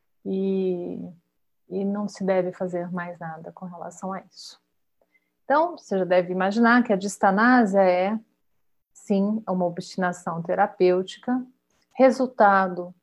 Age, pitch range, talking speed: 40-59, 175-215 Hz, 120 wpm